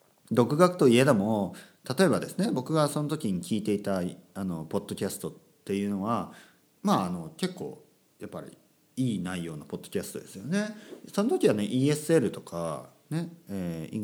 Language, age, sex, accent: Japanese, 40-59, male, native